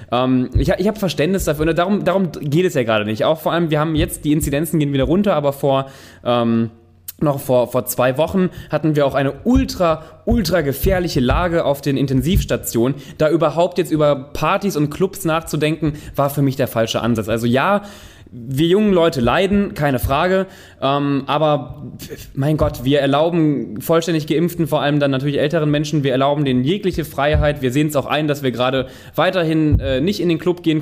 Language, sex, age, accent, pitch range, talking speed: German, male, 20-39, German, 135-170 Hz, 190 wpm